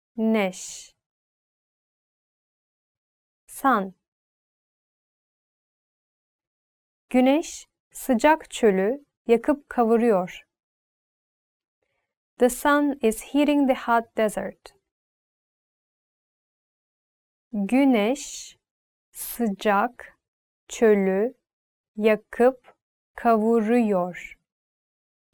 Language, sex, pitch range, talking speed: English, female, 200-260 Hz, 45 wpm